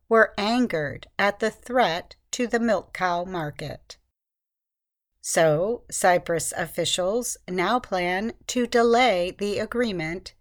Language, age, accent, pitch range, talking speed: English, 50-69, American, 170-235 Hz, 110 wpm